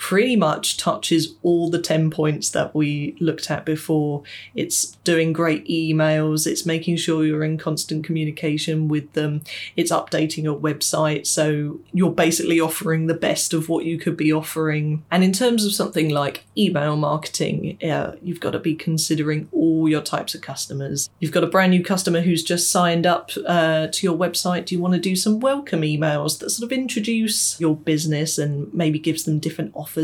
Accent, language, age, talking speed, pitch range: British, English, 20-39, 190 wpm, 155-175 Hz